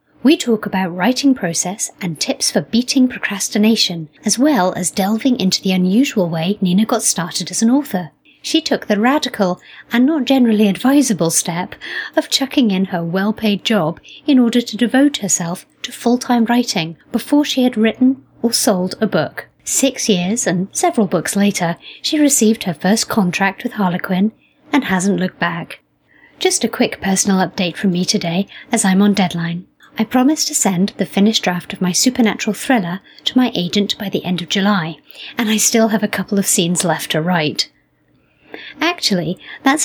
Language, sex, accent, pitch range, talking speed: English, female, British, 185-240 Hz, 175 wpm